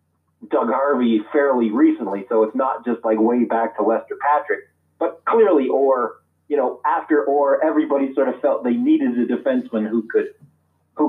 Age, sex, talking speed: 30-49, male, 175 wpm